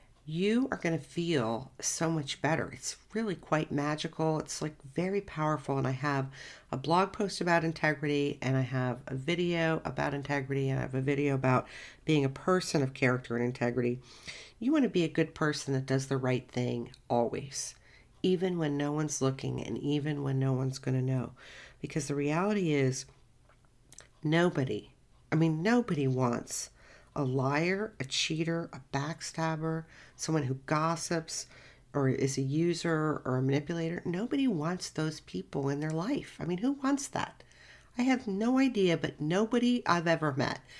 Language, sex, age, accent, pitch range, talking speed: English, female, 50-69, American, 135-175 Hz, 170 wpm